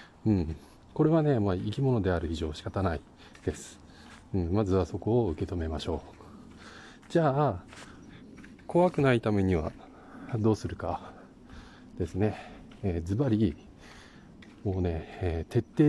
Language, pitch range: Japanese, 95-115 Hz